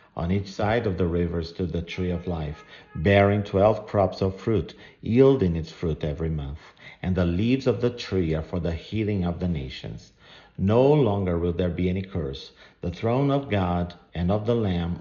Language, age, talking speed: English, 50-69, 195 wpm